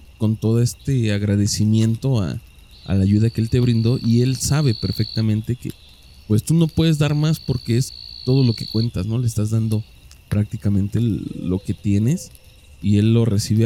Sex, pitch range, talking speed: male, 95-115 Hz, 180 wpm